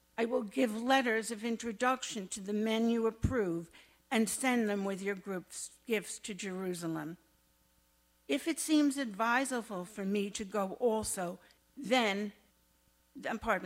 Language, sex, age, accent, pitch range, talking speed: English, female, 60-79, American, 190-250 Hz, 135 wpm